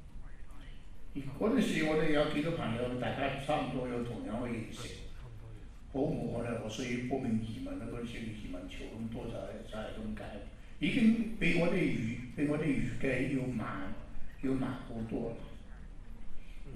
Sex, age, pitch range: male, 60-79, 110-130 Hz